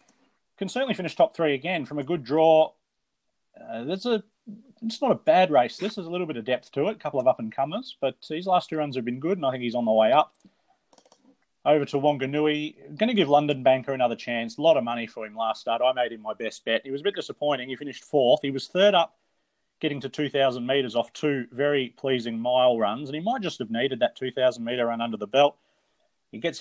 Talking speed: 240 wpm